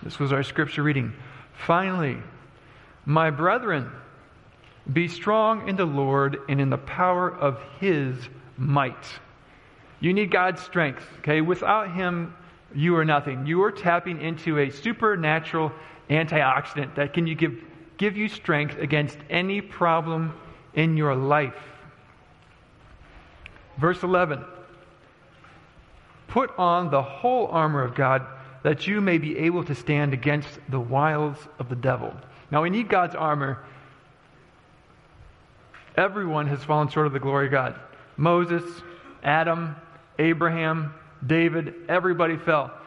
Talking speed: 125 wpm